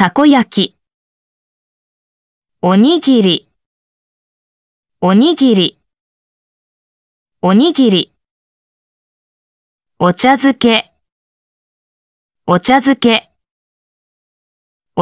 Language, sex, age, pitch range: Japanese, female, 20-39, 180-250 Hz